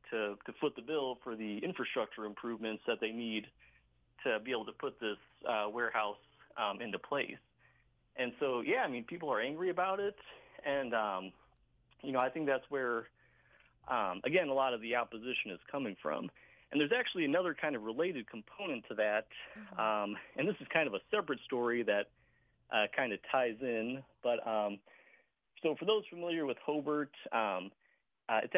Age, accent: 40-59, American